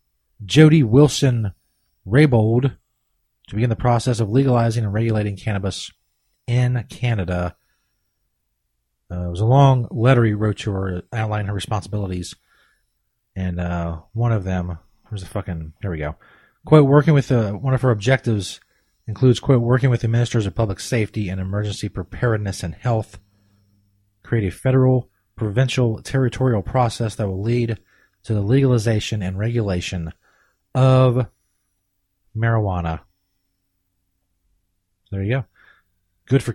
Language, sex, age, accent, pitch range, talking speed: English, male, 30-49, American, 90-120 Hz, 135 wpm